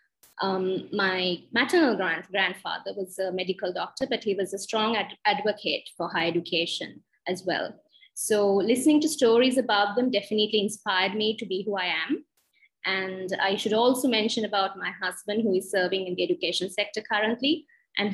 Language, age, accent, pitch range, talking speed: English, 20-39, Indian, 190-230 Hz, 165 wpm